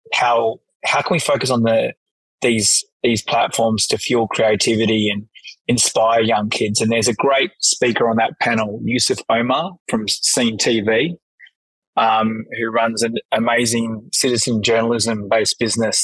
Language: English